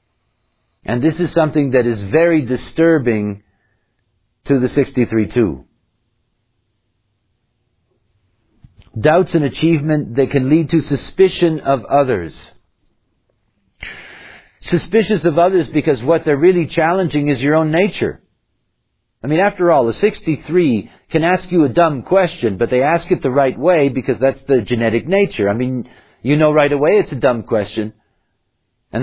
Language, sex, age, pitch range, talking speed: English, male, 50-69, 110-155 Hz, 140 wpm